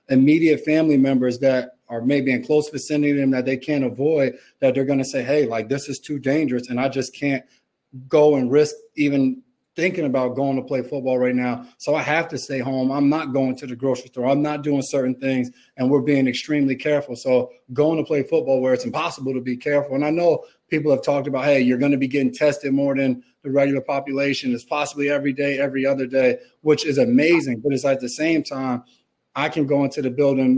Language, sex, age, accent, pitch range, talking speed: English, male, 30-49, American, 130-150 Hz, 225 wpm